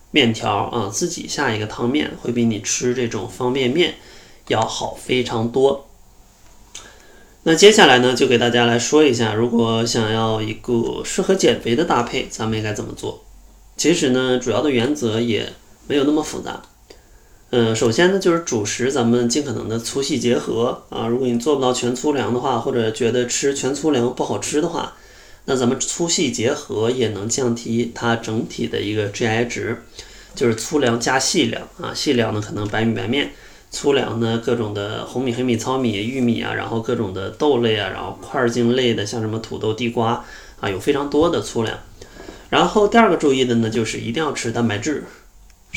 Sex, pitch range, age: male, 110-130 Hz, 20-39